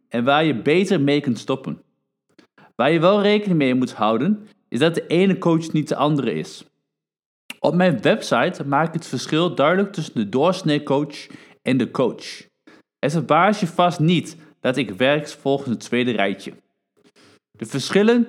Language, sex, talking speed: Dutch, male, 165 wpm